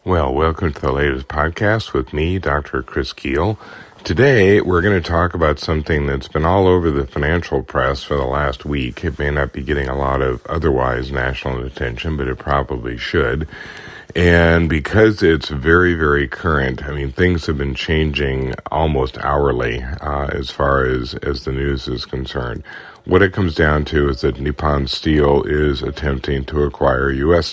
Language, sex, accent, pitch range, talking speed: English, male, American, 70-80 Hz, 175 wpm